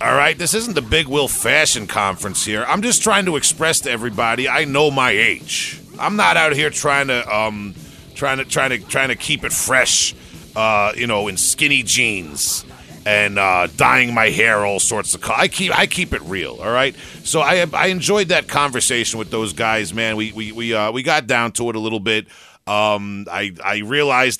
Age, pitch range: 40-59, 100-135 Hz